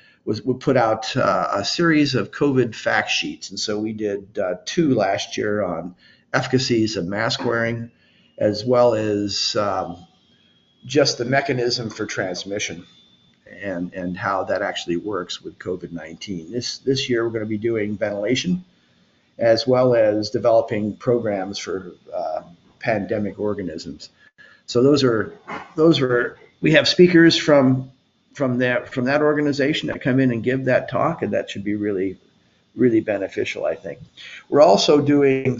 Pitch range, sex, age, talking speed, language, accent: 105-135 Hz, male, 50-69, 155 wpm, English, American